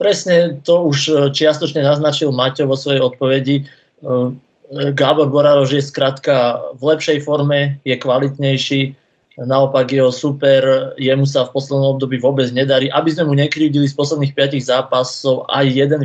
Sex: male